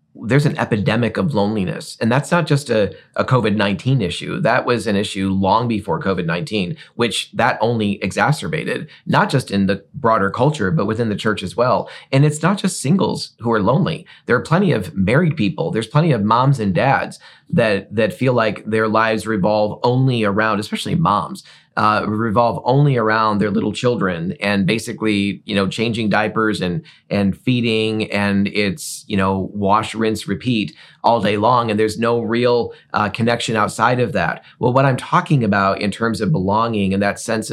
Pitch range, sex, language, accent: 105-125 Hz, male, English, American